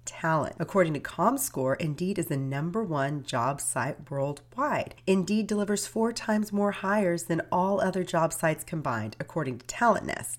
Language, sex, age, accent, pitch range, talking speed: English, female, 30-49, American, 140-190 Hz, 160 wpm